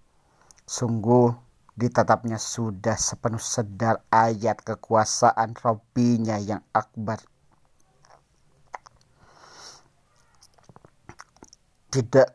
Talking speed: 55 wpm